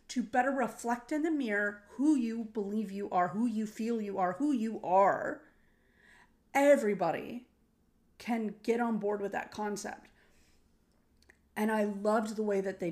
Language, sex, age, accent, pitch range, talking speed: English, female, 30-49, American, 185-235 Hz, 160 wpm